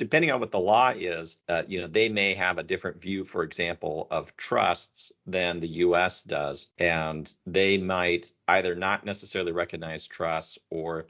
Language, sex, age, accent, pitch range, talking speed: English, male, 40-59, American, 80-95 Hz, 180 wpm